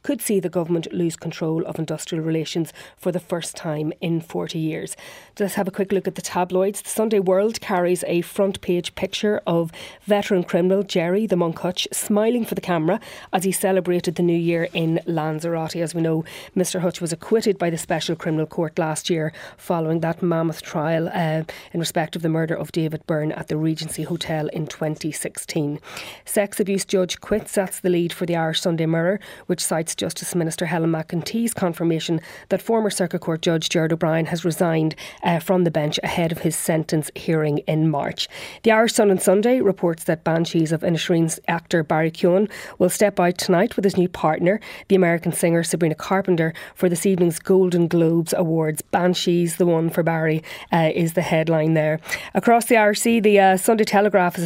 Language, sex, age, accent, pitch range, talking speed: English, female, 30-49, Irish, 165-190 Hz, 190 wpm